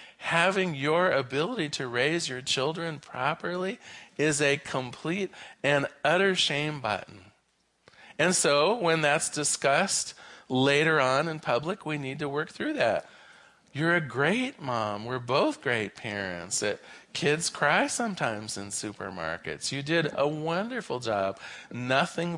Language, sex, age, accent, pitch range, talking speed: English, male, 40-59, American, 130-175 Hz, 130 wpm